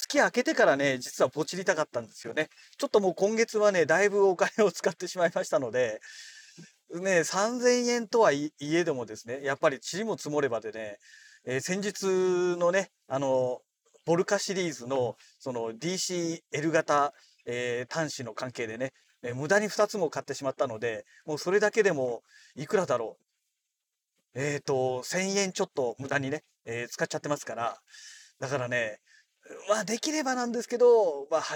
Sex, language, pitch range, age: male, Japanese, 140-210 Hz, 40-59